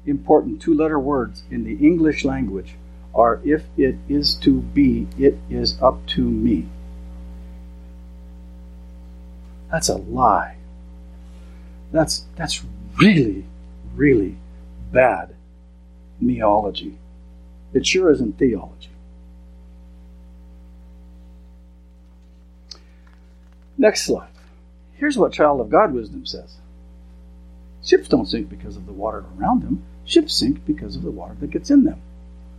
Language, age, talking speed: English, 60-79, 110 wpm